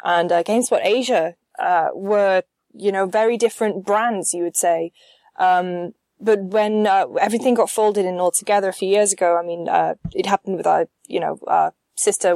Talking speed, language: 190 wpm, English